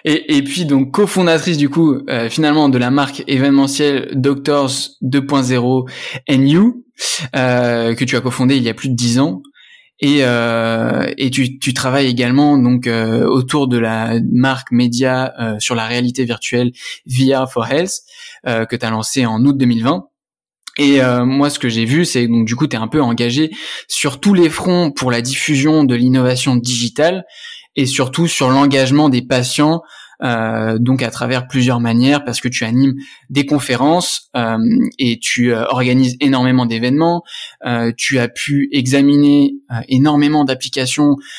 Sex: male